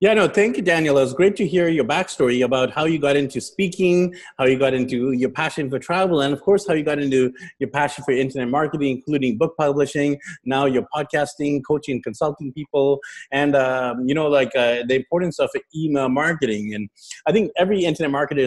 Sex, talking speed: male, 210 wpm